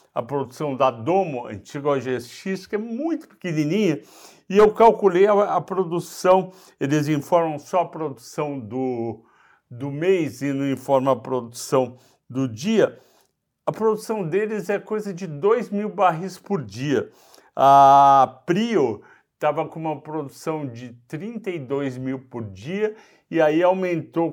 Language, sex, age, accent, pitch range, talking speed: Portuguese, male, 60-79, Brazilian, 135-190 Hz, 140 wpm